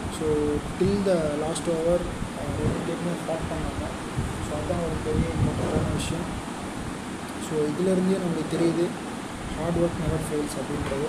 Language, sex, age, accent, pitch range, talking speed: Tamil, male, 20-39, native, 155-175 Hz, 130 wpm